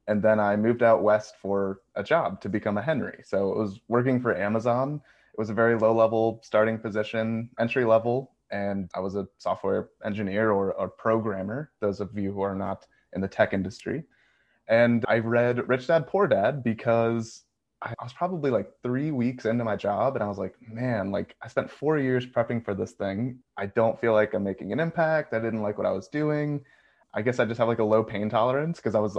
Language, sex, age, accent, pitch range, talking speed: English, male, 20-39, American, 105-125 Hz, 220 wpm